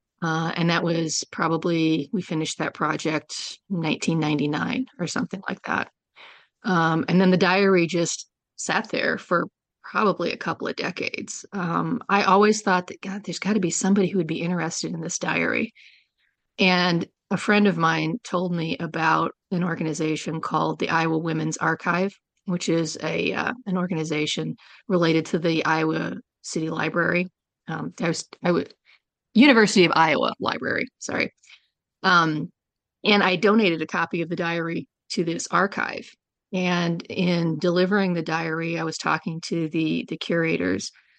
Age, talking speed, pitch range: 40-59, 155 wpm, 160-185 Hz